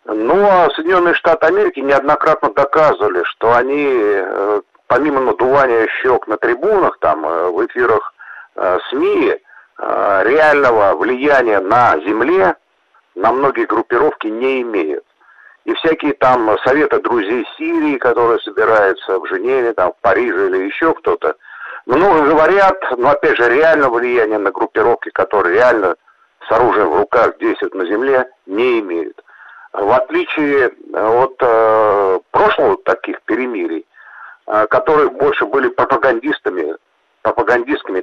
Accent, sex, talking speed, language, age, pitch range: native, male, 115 wpm, Russian, 50-69, 335-415 Hz